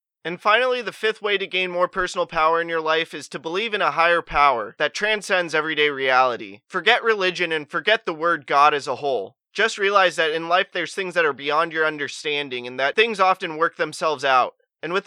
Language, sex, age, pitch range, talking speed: English, male, 20-39, 145-185 Hz, 220 wpm